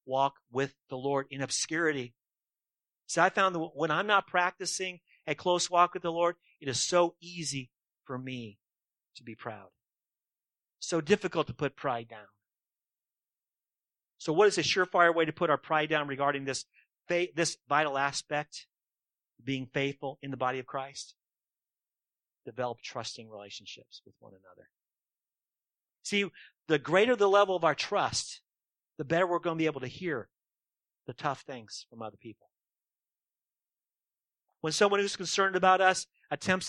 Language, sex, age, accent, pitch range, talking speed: English, male, 40-59, American, 135-175 Hz, 155 wpm